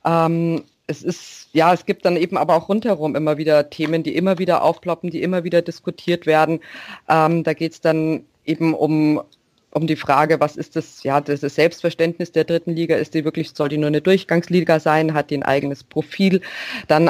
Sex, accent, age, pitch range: female, German, 30-49, 150-175 Hz